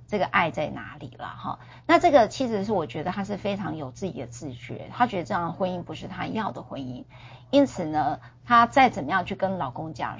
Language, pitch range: Chinese, 155-235 Hz